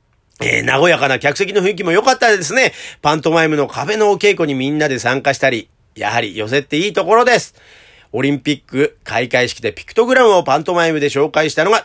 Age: 40-59